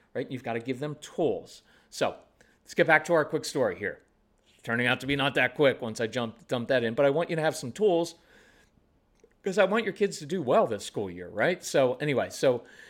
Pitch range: 120-160 Hz